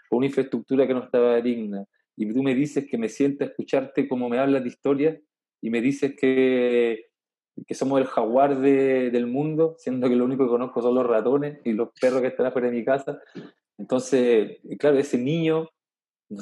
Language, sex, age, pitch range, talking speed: Spanish, male, 20-39, 120-145 Hz, 195 wpm